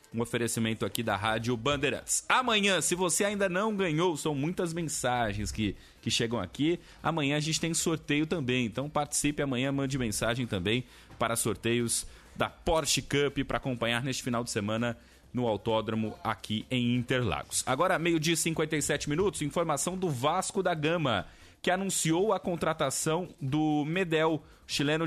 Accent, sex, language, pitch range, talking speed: Brazilian, male, Portuguese, 120-160 Hz, 155 wpm